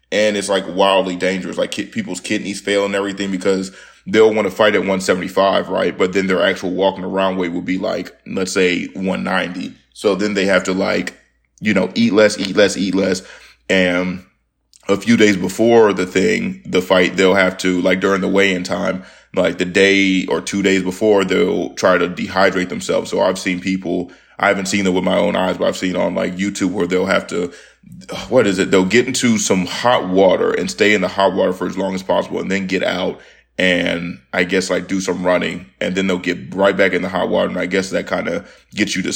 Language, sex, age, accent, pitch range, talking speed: English, male, 20-39, American, 90-100 Hz, 225 wpm